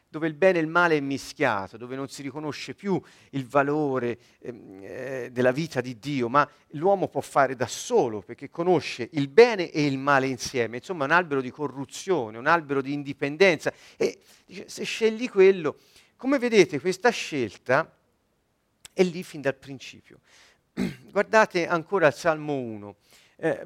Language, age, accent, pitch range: Italian, 40-59, native, 135-195 Hz